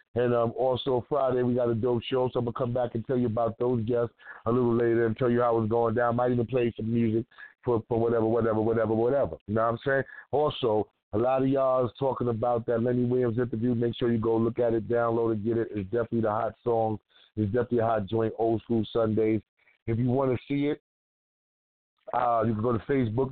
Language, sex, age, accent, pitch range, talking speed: English, male, 30-49, American, 115-125 Hz, 250 wpm